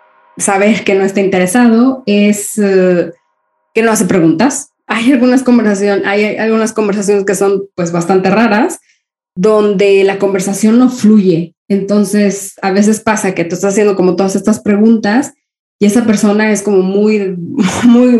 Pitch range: 190-225 Hz